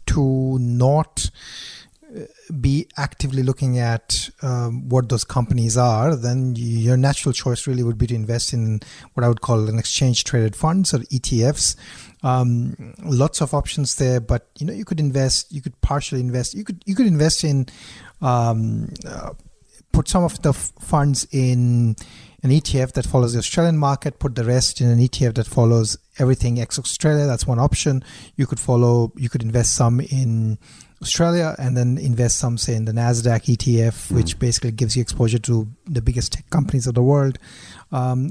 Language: English